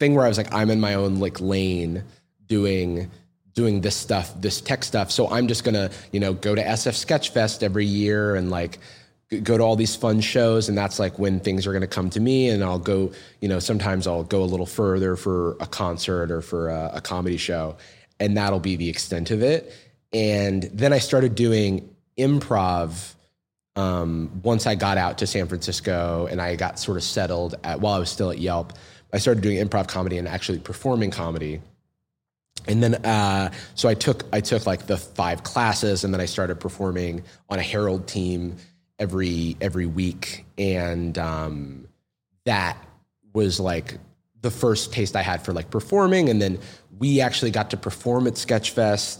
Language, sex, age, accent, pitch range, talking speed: English, male, 30-49, American, 90-110 Hz, 195 wpm